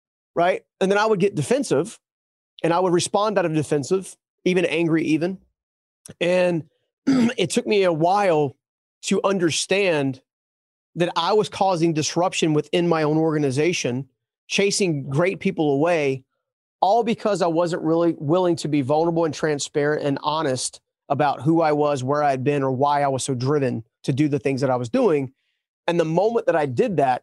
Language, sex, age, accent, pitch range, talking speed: English, male, 30-49, American, 145-180 Hz, 175 wpm